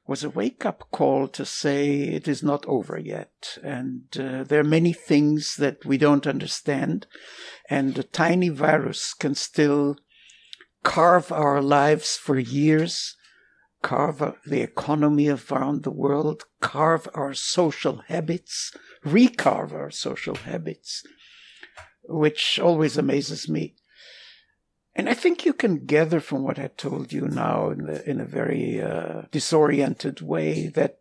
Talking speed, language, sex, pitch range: 135 wpm, English, male, 140-160 Hz